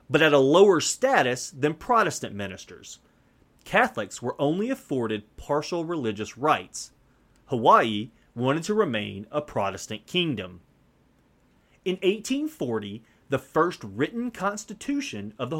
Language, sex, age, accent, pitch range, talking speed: English, male, 30-49, American, 110-170 Hz, 115 wpm